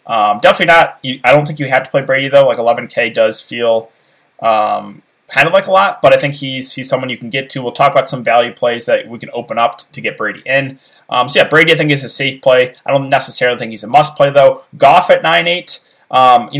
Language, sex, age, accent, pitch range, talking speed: English, male, 20-39, American, 125-150 Hz, 260 wpm